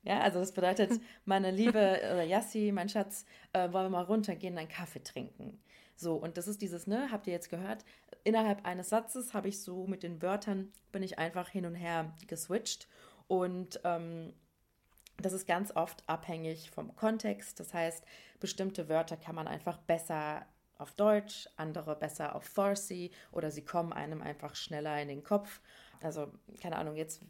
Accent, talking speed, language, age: German, 175 wpm, German, 30-49